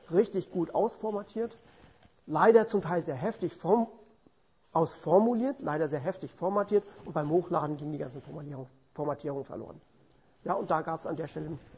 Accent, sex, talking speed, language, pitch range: German, male, 160 wpm, English, 155-210 Hz